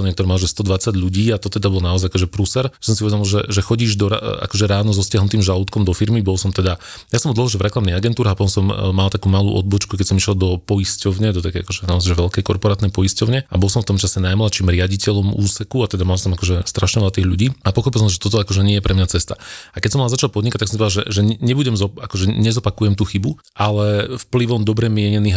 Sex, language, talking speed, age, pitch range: male, Slovak, 250 wpm, 30-49, 95-110 Hz